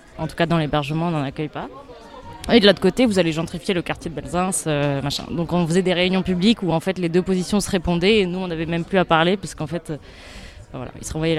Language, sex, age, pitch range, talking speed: French, female, 20-39, 165-190 Hz, 275 wpm